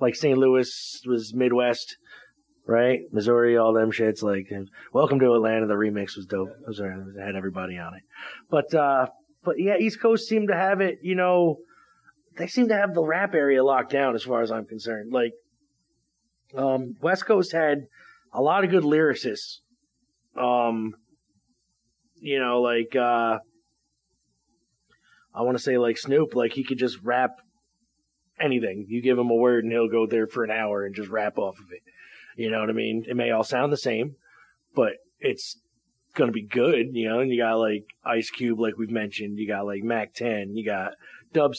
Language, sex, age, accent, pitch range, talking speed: English, male, 30-49, American, 110-140 Hz, 190 wpm